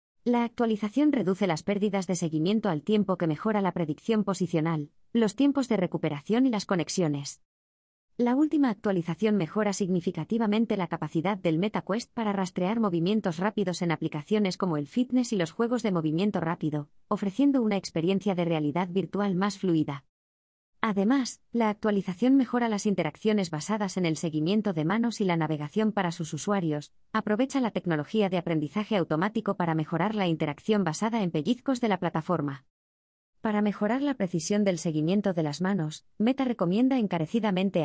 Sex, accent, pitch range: female, Spanish, 165-220 Hz